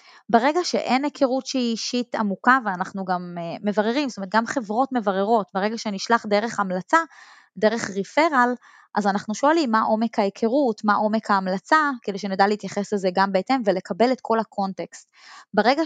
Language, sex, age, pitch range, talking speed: Hebrew, female, 20-39, 205-265 Hz, 155 wpm